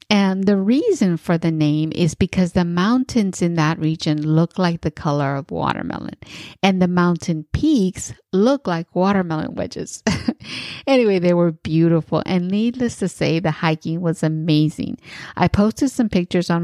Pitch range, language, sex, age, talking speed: 160-195 Hz, English, female, 50-69, 160 wpm